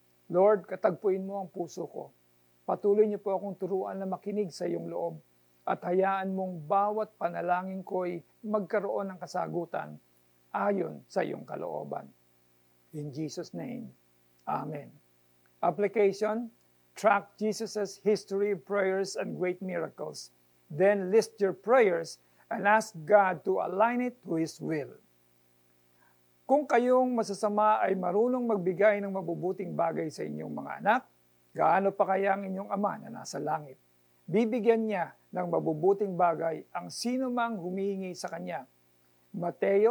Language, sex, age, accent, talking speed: Filipino, male, 50-69, native, 135 wpm